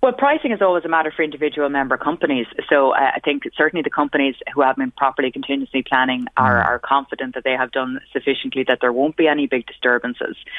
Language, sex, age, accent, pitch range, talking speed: English, female, 20-39, Irish, 120-135 Hz, 215 wpm